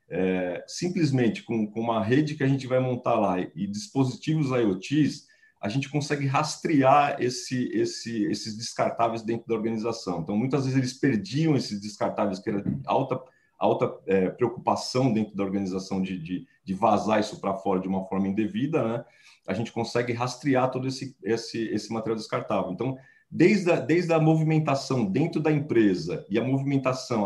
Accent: Brazilian